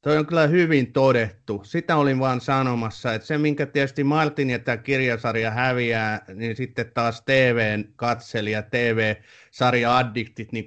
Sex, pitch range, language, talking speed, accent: male, 105-135 Hz, Finnish, 135 wpm, native